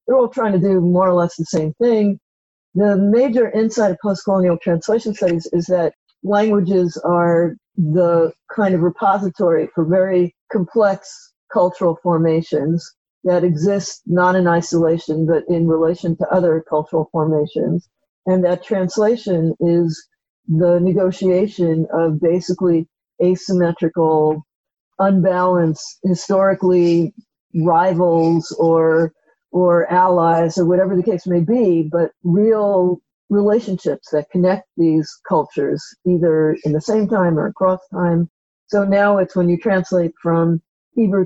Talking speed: 125 wpm